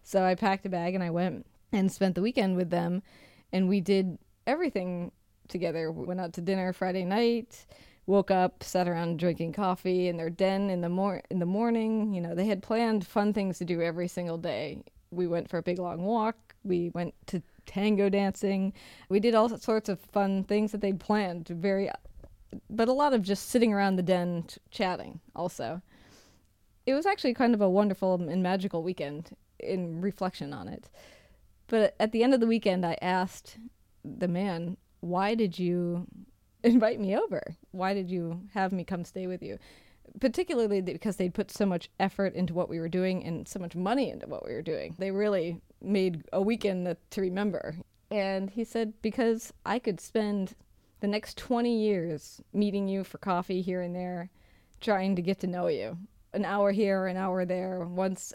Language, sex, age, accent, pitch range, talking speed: English, female, 20-39, American, 180-210 Hz, 190 wpm